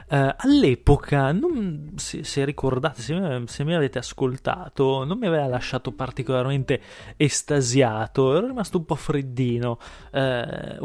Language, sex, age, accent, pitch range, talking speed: Italian, male, 20-39, native, 130-160 Hz, 135 wpm